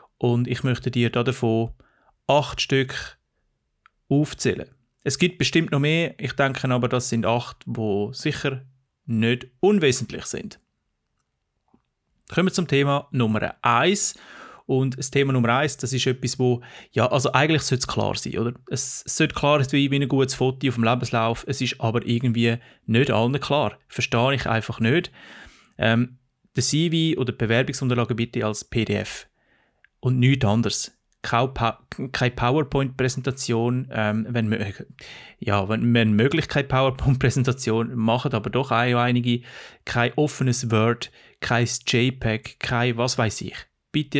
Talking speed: 145 wpm